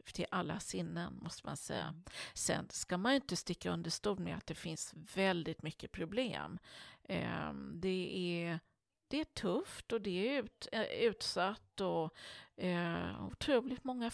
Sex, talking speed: female, 130 wpm